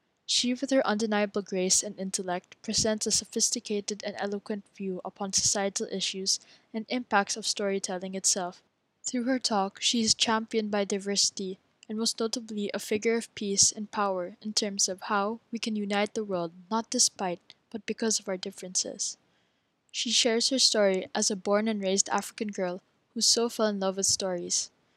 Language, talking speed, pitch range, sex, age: English, 175 wpm, 195-225 Hz, female, 10-29